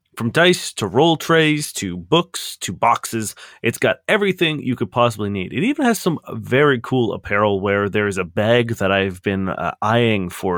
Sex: male